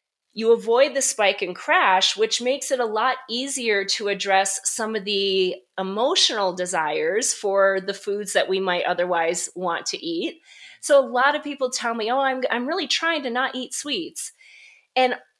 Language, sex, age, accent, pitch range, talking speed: English, female, 30-49, American, 210-300 Hz, 180 wpm